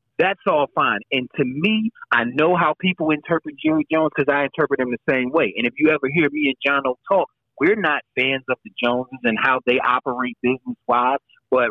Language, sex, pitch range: English, male, 135-195 Hz